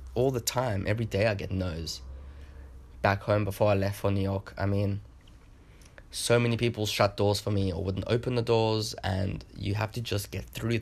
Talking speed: 205 wpm